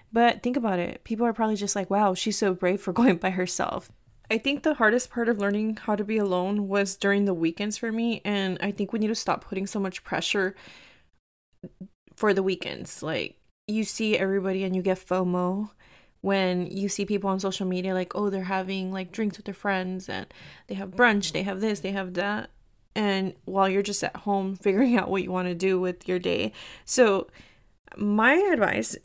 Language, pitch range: English, 190-220 Hz